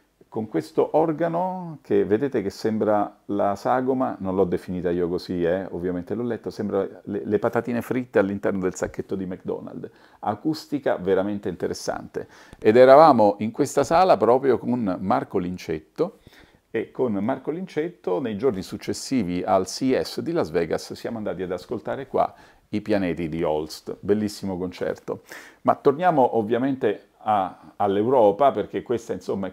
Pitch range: 95-140 Hz